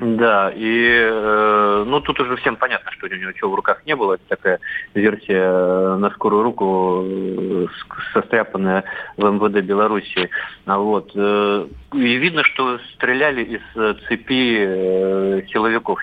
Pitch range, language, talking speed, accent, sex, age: 95-110 Hz, Russian, 125 wpm, native, male, 30-49